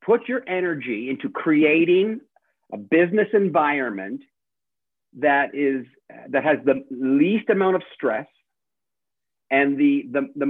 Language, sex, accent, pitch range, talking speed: English, male, American, 140-190 Hz, 120 wpm